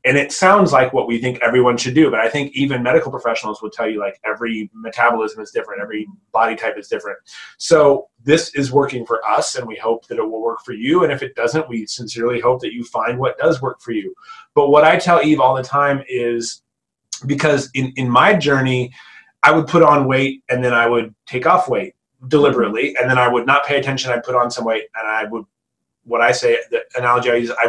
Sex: male